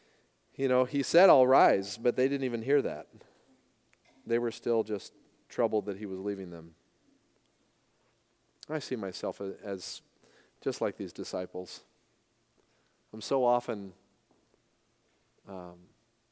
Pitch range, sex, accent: 105-130 Hz, male, American